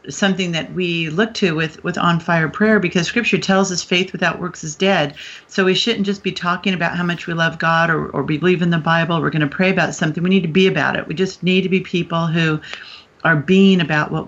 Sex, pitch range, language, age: female, 160-190 Hz, English, 40-59